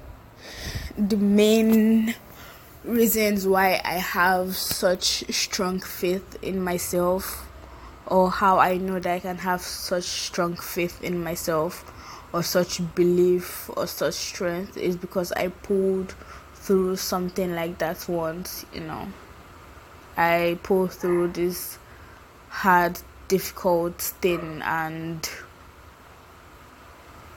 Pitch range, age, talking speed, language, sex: 170-190 Hz, 20-39, 105 wpm, English, female